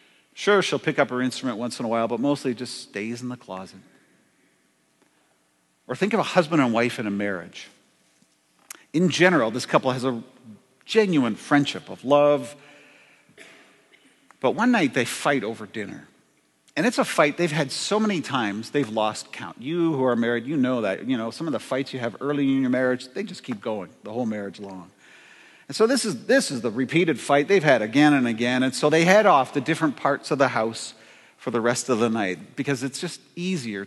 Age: 50-69